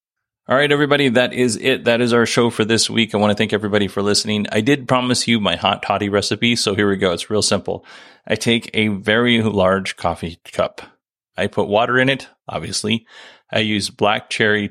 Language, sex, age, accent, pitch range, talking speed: English, male, 30-49, American, 100-120 Hz, 210 wpm